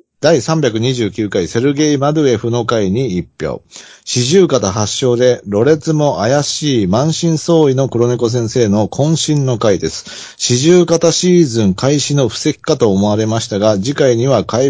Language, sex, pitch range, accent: Japanese, male, 115-150 Hz, native